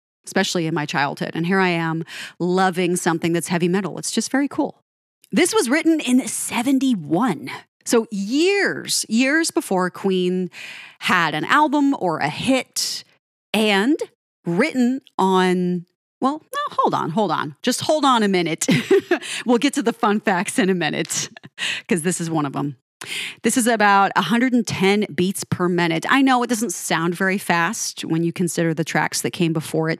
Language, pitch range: English, 170-240 Hz